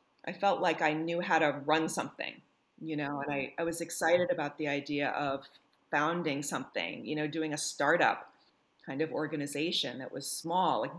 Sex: female